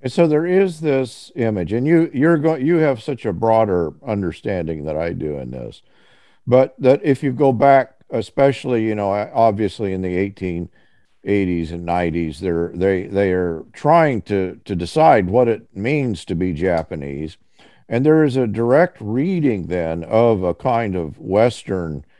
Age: 50-69